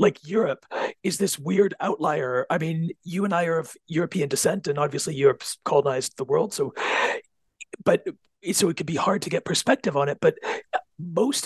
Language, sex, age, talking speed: English, male, 40-59, 180 wpm